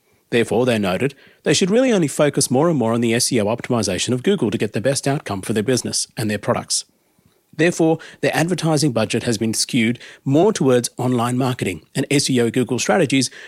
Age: 40-59